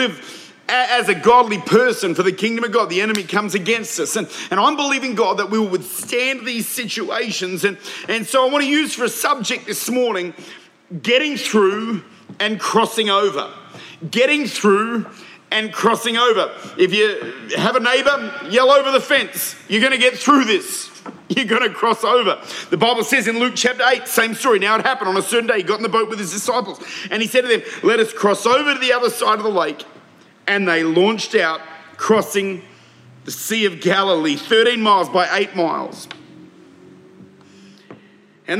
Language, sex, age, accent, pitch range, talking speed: English, male, 40-59, Australian, 190-250 Hz, 185 wpm